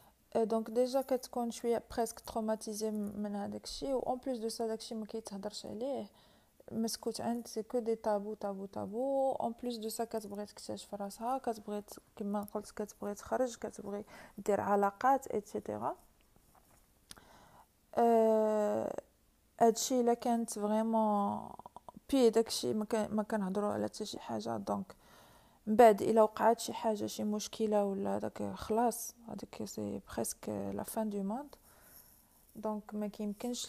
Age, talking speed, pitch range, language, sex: 40-59, 120 wpm, 205-230 Hz, Arabic, female